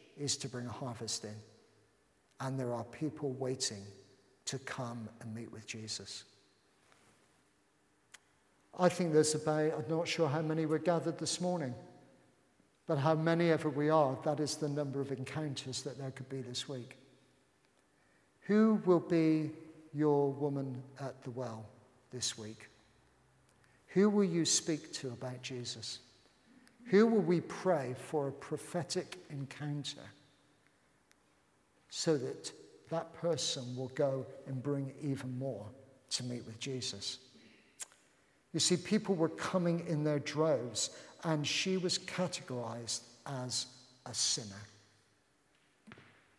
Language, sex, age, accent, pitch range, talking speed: English, male, 50-69, British, 125-160 Hz, 135 wpm